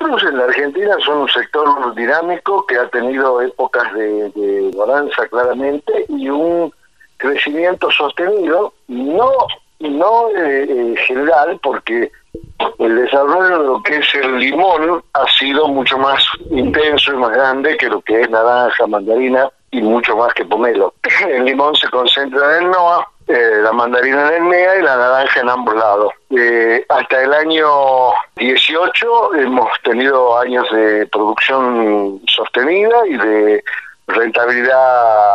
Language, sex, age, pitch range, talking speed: Spanish, male, 50-69, 125-205 Hz, 145 wpm